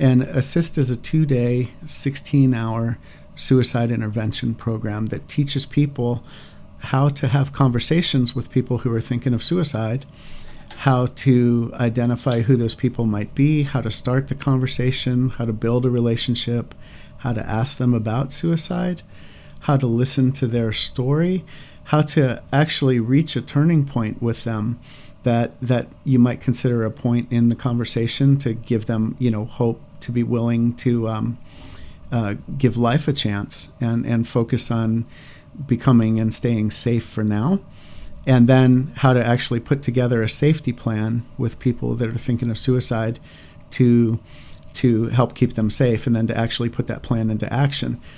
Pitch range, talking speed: 115-135 Hz, 160 wpm